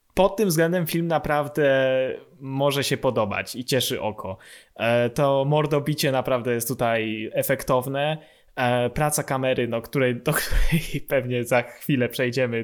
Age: 20-39